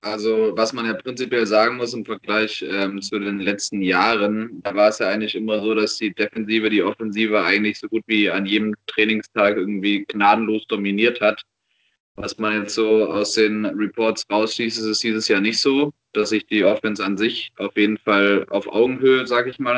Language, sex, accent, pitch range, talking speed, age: German, male, German, 105-120 Hz, 195 wpm, 20-39